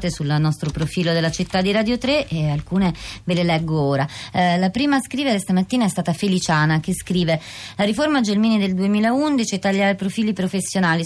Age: 30-49